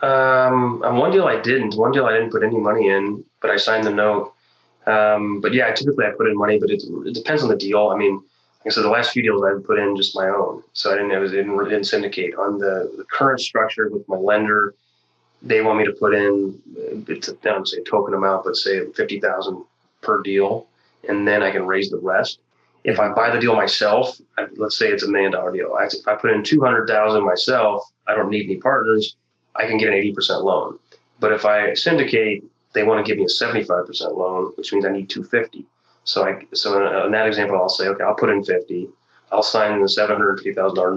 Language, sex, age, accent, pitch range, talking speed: English, male, 20-39, American, 100-130 Hz, 230 wpm